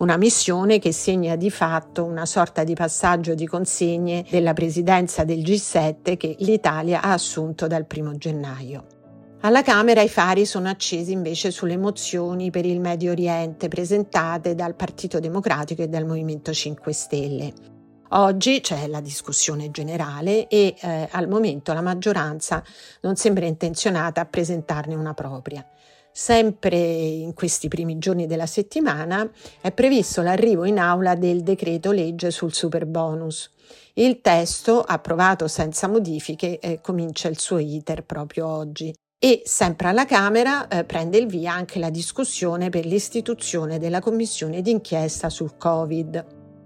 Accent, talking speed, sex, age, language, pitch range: native, 145 wpm, female, 50-69, Italian, 160-195 Hz